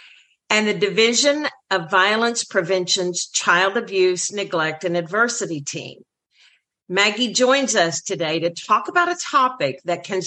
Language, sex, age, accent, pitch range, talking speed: English, female, 50-69, American, 180-260 Hz, 135 wpm